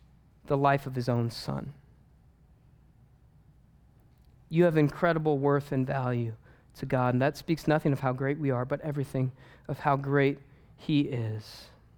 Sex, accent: male, American